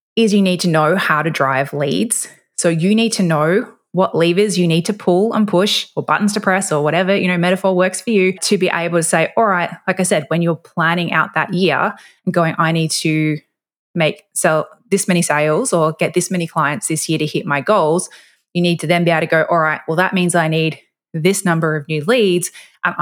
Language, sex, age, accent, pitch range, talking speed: English, female, 20-39, Australian, 160-185 Hz, 240 wpm